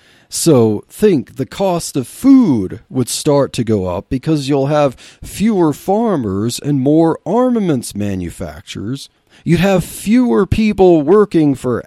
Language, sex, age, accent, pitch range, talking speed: English, male, 40-59, American, 125-185 Hz, 130 wpm